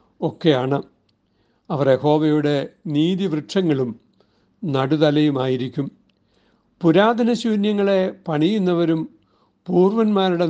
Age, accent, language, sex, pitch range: 60-79, native, Malayalam, male, 135-165 Hz